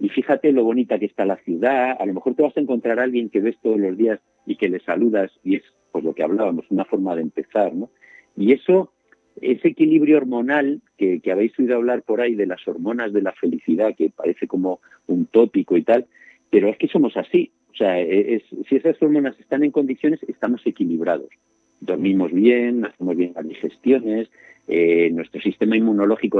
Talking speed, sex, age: 200 wpm, male, 50-69